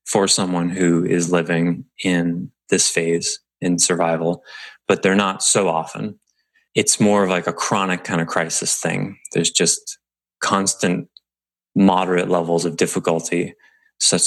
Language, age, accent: English, 30-49, American